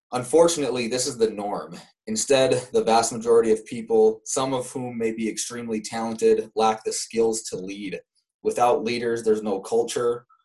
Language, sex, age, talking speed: English, male, 20-39, 160 wpm